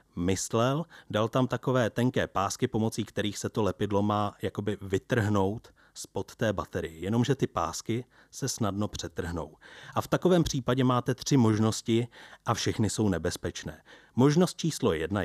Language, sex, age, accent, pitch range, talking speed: Czech, male, 30-49, native, 95-120 Hz, 145 wpm